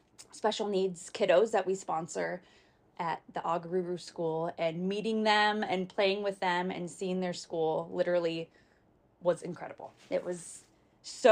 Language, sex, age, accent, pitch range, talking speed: English, female, 20-39, American, 165-210 Hz, 145 wpm